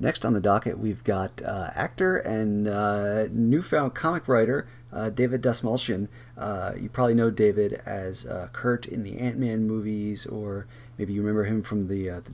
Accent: American